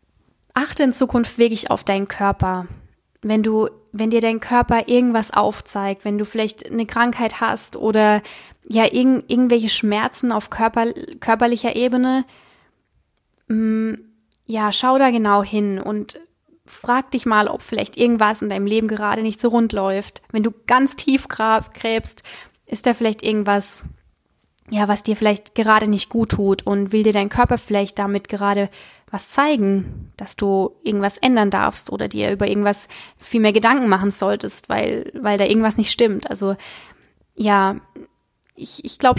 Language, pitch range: German, 200-235 Hz